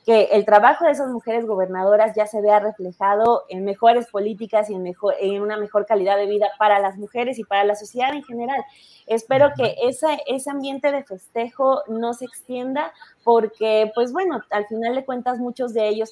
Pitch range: 205-240 Hz